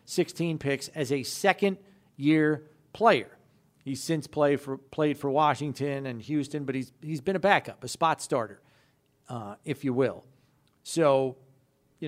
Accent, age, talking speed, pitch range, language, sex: American, 40-59, 150 wpm, 135-150 Hz, English, male